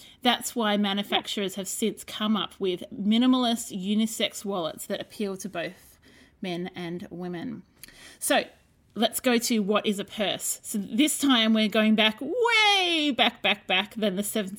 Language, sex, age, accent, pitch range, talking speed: English, female, 30-49, Australian, 205-250 Hz, 155 wpm